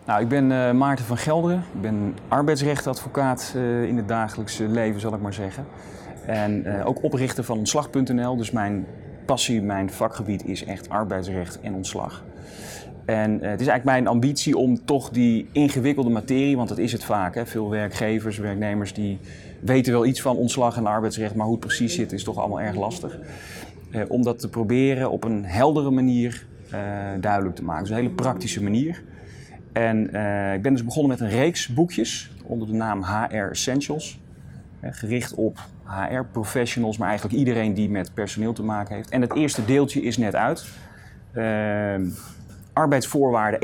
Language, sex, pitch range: Dutch, male, 105-125 Hz